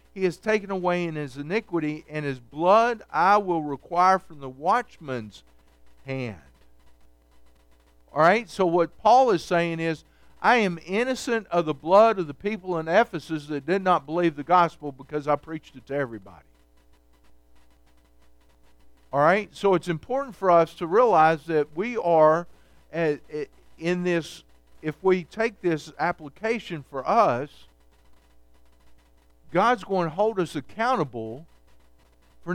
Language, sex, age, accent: English, male, 50-69, American